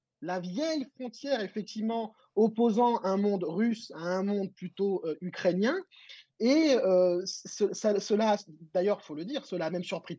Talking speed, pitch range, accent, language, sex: 170 wpm, 190-260 Hz, French, French, male